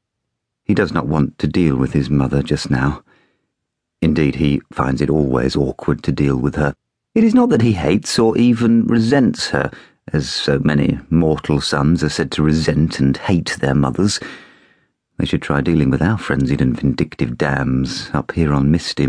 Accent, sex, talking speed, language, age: British, male, 180 wpm, English, 40-59